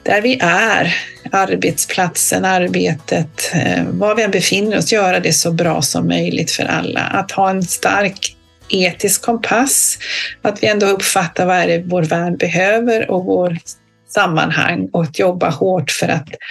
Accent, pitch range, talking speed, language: native, 165-215 Hz, 160 wpm, Swedish